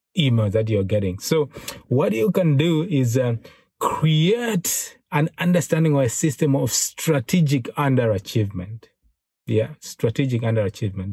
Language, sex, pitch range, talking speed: English, male, 115-155 Hz, 125 wpm